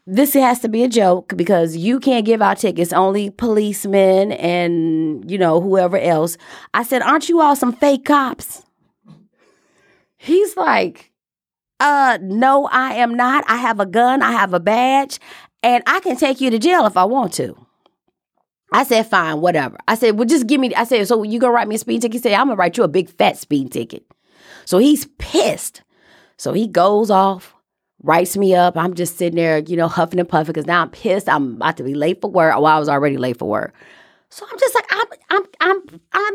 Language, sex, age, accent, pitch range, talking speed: English, female, 30-49, American, 185-285 Hz, 215 wpm